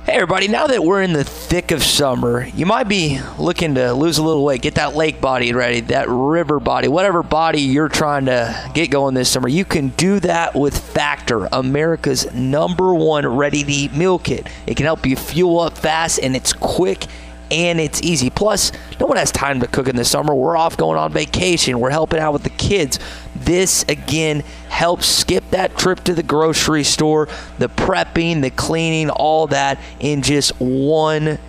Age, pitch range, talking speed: 30-49, 135-165 Hz, 190 wpm